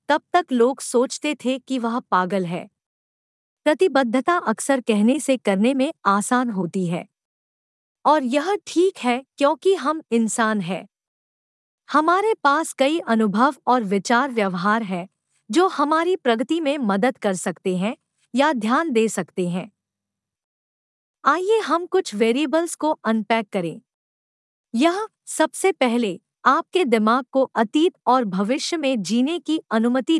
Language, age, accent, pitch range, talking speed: Hindi, 50-69, native, 215-305 Hz, 135 wpm